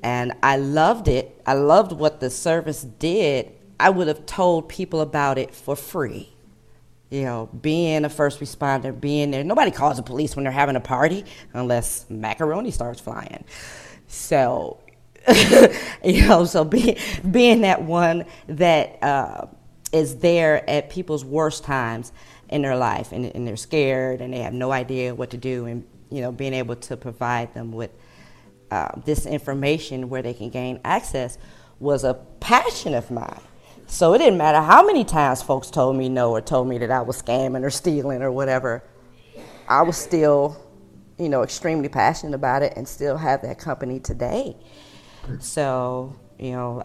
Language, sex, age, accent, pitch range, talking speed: English, female, 40-59, American, 125-155 Hz, 170 wpm